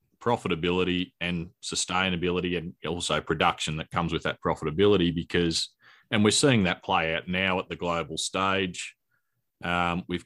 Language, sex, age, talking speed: English, male, 30-49, 145 wpm